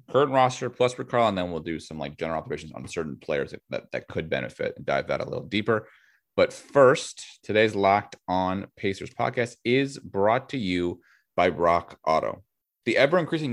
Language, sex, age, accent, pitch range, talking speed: English, male, 30-49, American, 95-125 Hz, 185 wpm